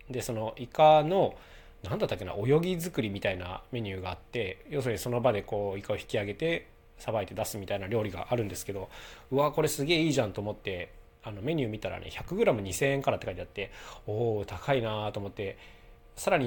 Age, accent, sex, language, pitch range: 20-39, native, male, Japanese, 100-140 Hz